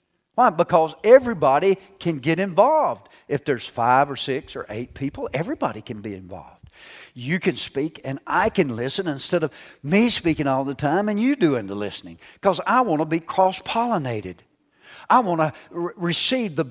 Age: 50-69